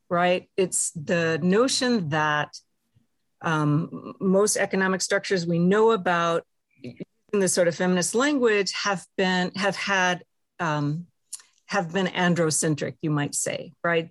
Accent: American